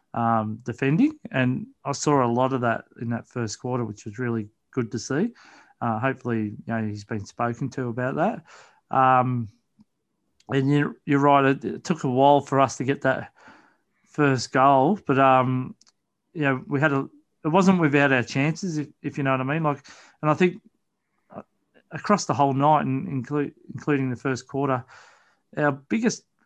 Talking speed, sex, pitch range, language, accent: 185 wpm, male, 125-150 Hz, English, Australian